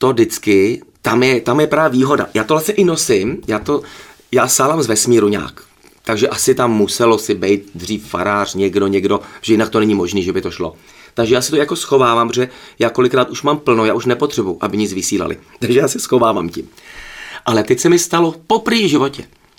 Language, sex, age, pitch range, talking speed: Czech, male, 30-49, 120-170 Hz, 210 wpm